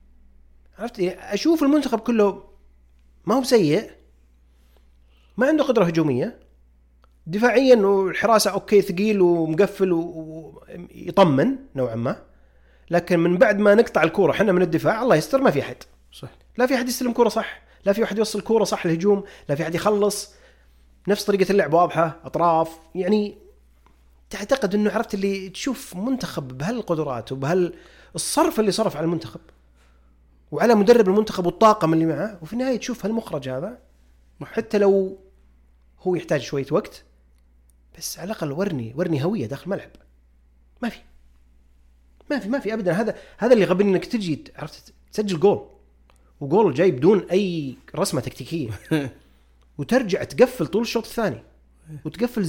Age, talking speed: 30-49, 145 wpm